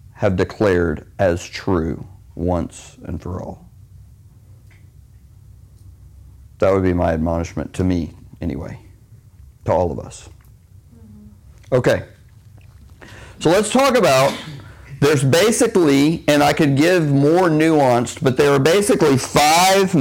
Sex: male